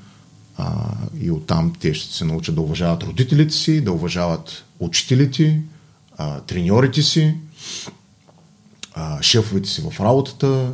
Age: 30-49